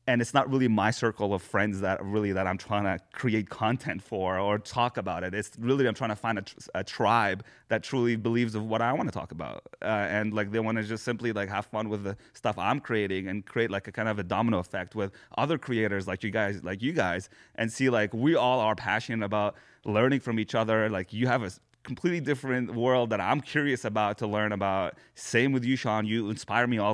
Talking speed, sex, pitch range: 240 wpm, male, 105-125 Hz